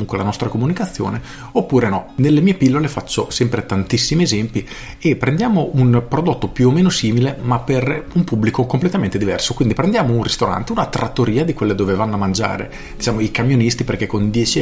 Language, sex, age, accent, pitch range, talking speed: Italian, male, 40-59, native, 110-135 Hz, 180 wpm